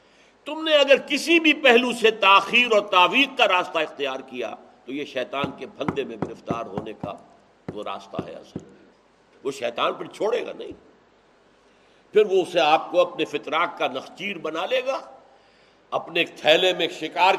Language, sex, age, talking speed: Urdu, male, 60-79, 170 wpm